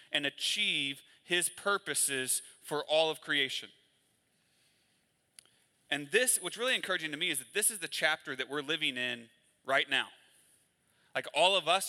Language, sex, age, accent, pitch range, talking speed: English, male, 30-49, American, 135-180 Hz, 155 wpm